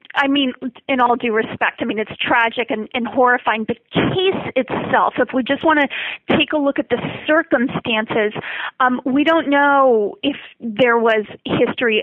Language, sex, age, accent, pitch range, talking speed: English, female, 30-49, American, 220-265 Hz, 175 wpm